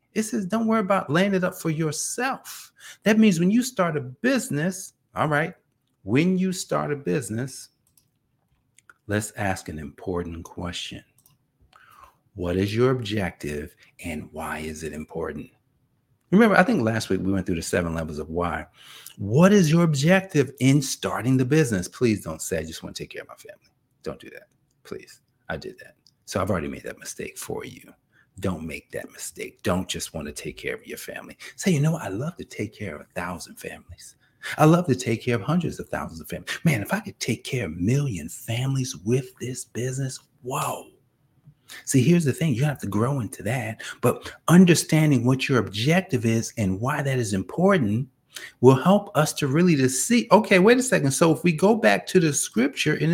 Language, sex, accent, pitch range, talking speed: English, male, American, 110-170 Hz, 200 wpm